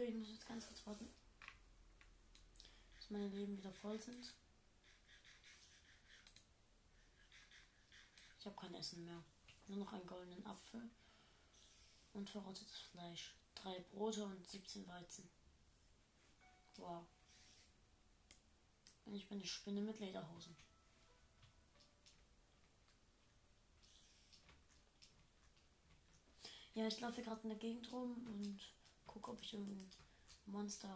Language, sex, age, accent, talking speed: German, female, 20-39, German, 100 wpm